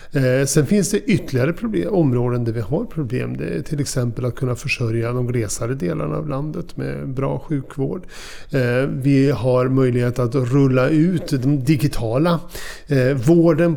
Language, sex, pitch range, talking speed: Swedish, male, 120-155 Hz, 150 wpm